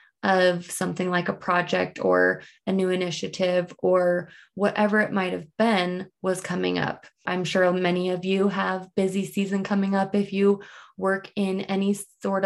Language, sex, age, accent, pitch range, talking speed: English, female, 20-39, American, 180-200 Hz, 160 wpm